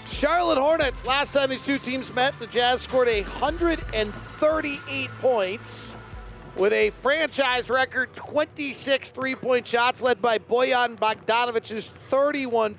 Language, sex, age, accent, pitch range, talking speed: English, male, 40-59, American, 215-260 Hz, 115 wpm